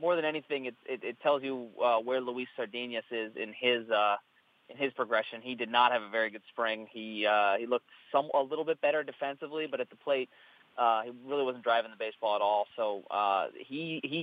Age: 30-49